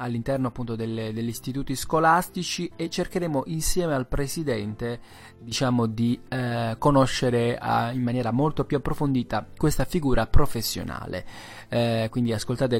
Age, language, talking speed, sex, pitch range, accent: 20-39, Italian, 125 wpm, male, 115-150 Hz, native